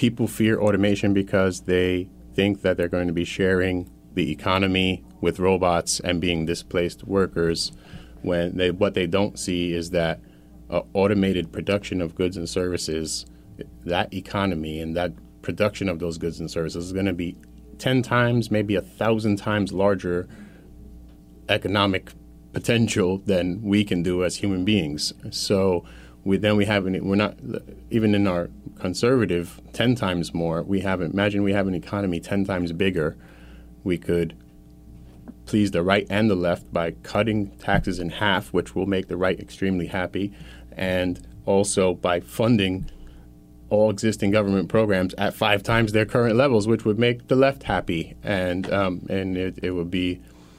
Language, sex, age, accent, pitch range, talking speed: English, male, 30-49, American, 85-100 Hz, 160 wpm